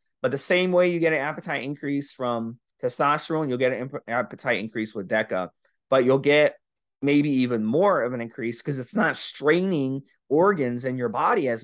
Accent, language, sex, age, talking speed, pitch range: American, English, male, 30-49, 190 wpm, 120-155 Hz